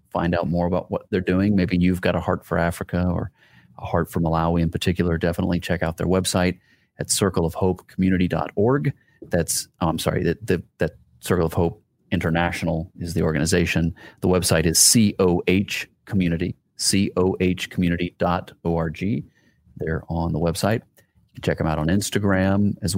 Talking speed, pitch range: 155 wpm, 85-100 Hz